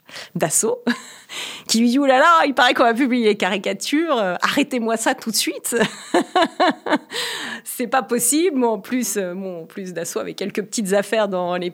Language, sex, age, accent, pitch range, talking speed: French, female, 40-59, French, 180-235 Hz, 180 wpm